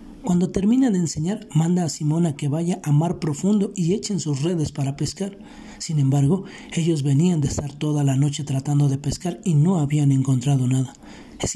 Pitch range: 150-185 Hz